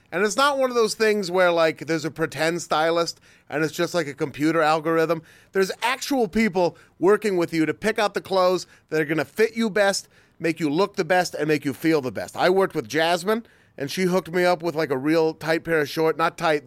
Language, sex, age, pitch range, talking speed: English, male, 30-49, 145-195 Hz, 245 wpm